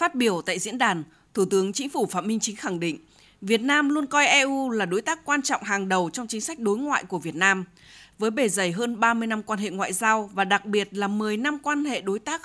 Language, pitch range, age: Vietnamese, 205-275 Hz, 20-39